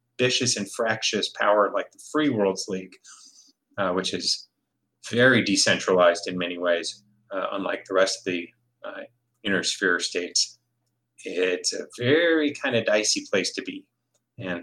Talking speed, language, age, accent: 150 wpm, English, 30-49, American